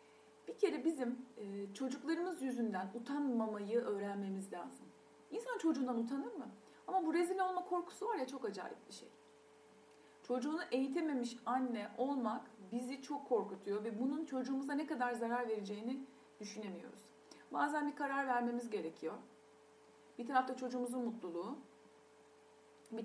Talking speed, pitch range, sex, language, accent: 125 wpm, 220-285 Hz, female, Turkish, native